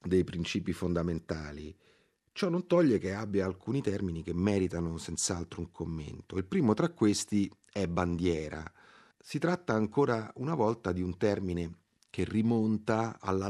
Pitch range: 90-110 Hz